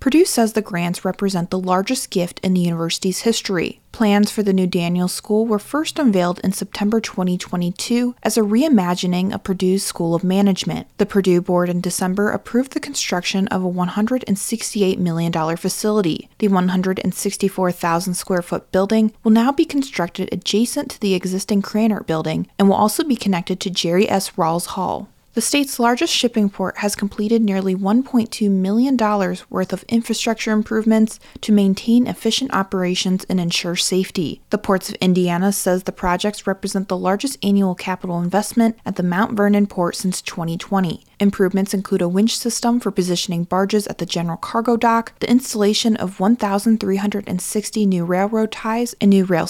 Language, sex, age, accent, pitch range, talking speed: English, female, 30-49, American, 185-225 Hz, 160 wpm